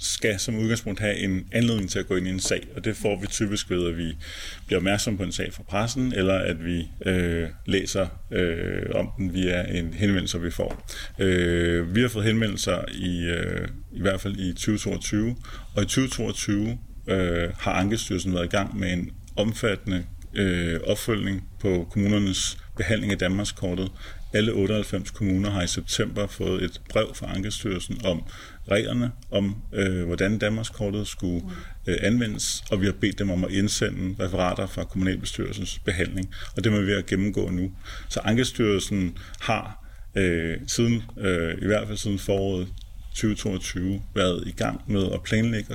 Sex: male